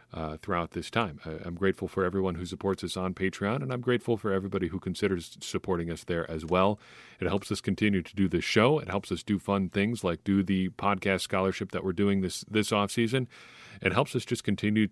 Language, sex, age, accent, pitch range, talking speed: English, male, 40-59, American, 90-110 Hz, 230 wpm